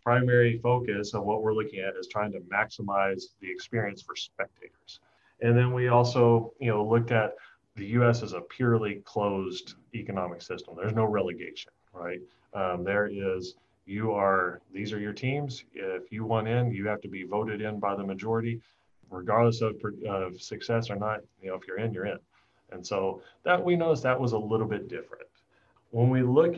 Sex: male